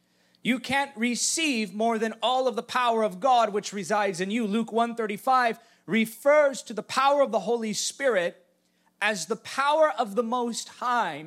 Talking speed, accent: 170 wpm, American